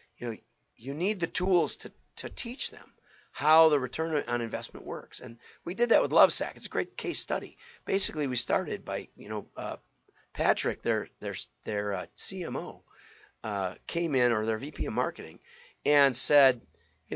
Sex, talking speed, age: male, 180 wpm, 40-59